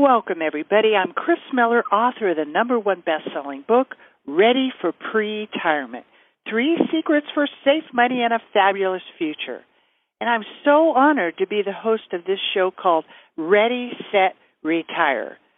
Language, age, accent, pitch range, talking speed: English, 50-69, American, 180-260 Hz, 155 wpm